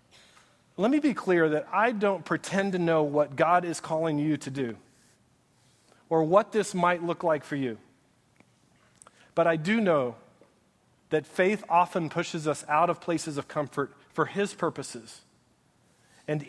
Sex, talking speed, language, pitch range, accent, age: male, 155 wpm, English, 160-200 Hz, American, 40-59